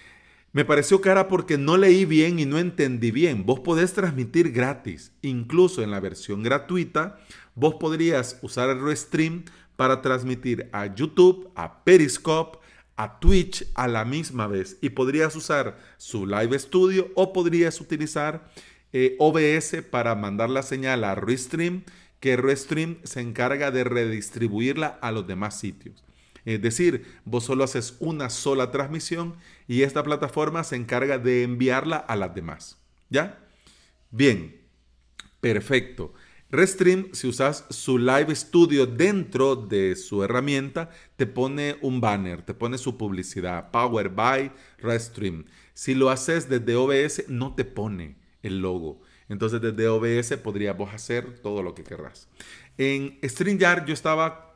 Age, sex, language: 40-59, male, Spanish